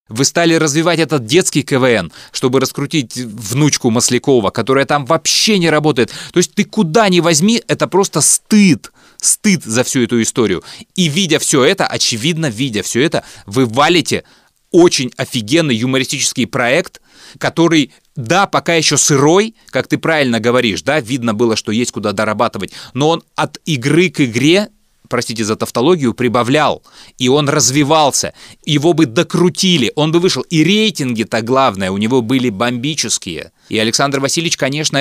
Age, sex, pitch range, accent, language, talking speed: 30-49, male, 125-170 Hz, native, Russian, 155 wpm